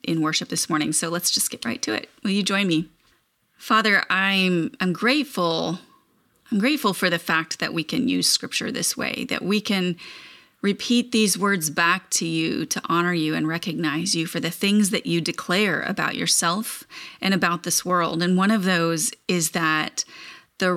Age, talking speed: 30-49, 190 wpm